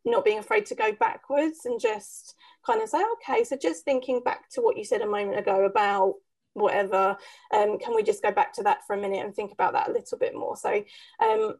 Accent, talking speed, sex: British, 240 wpm, female